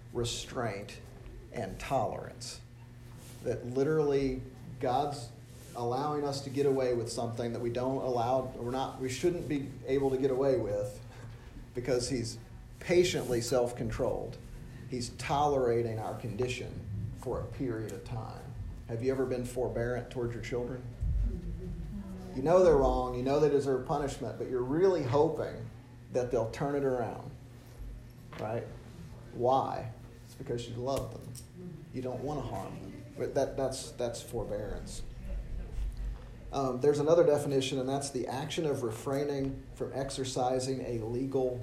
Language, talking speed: English, 140 wpm